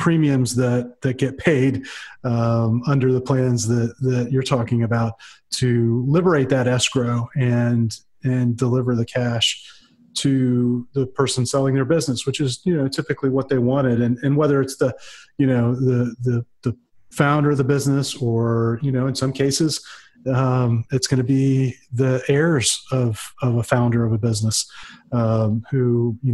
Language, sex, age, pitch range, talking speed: English, male, 30-49, 120-135 Hz, 170 wpm